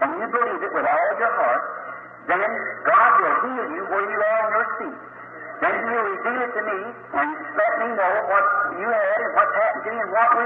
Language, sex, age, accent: English, male, 50-69, American